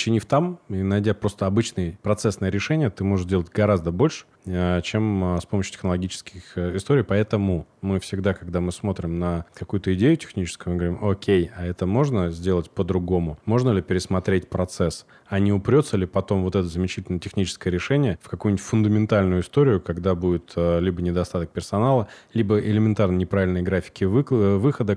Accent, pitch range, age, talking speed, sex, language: native, 90-105 Hz, 20-39, 155 wpm, male, Russian